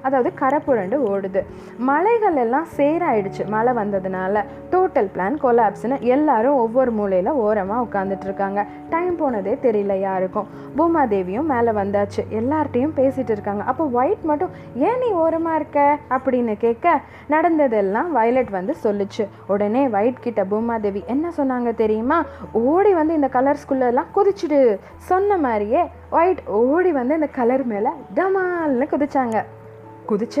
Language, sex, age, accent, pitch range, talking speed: Tamil, female, 20-39, native, 205-285 Hz, 120 wpm